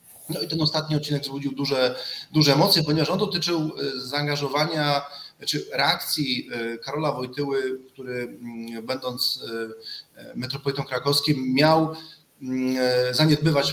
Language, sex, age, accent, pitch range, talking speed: Polish, male, 30-49, native, 135-165 Hz, 100 wpm